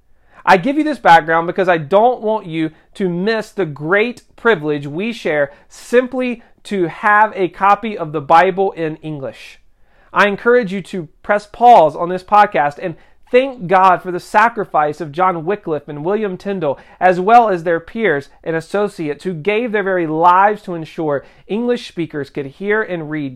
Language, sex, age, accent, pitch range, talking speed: English, male, 40-59, American, 155-210 Hz, 175 wpm